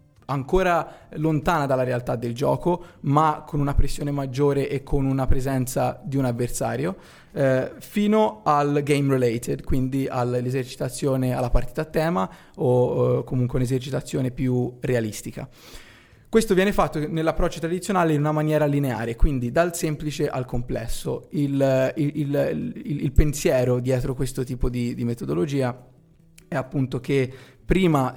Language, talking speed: Italian, 135 wpm